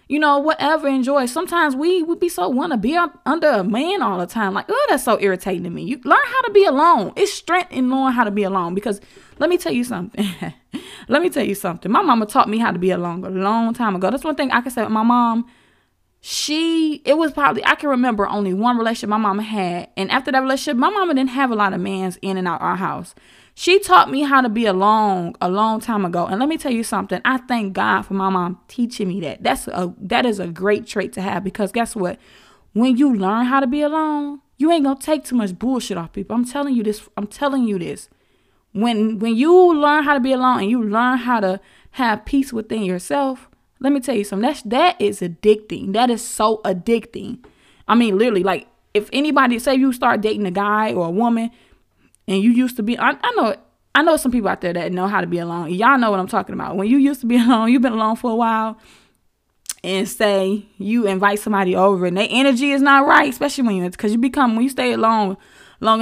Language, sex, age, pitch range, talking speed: English, female, 20-39, 200-275 Hz, 245 wpm